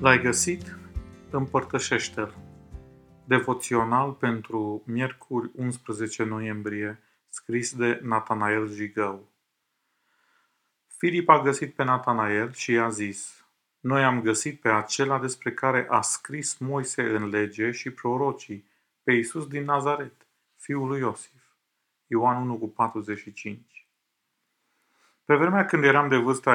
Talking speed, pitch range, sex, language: 110 wpm, 110-135 Hz, male, Romanian